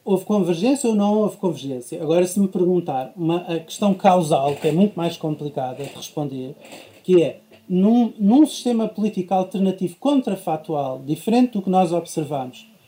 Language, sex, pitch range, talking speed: Portuguese, male, 175-235 Hz, 155 wpm